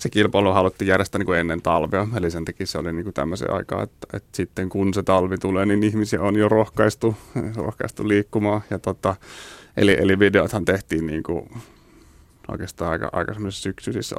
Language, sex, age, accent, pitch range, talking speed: Finnish, male, 30-49, native, 90-105 Hz, 180 wpm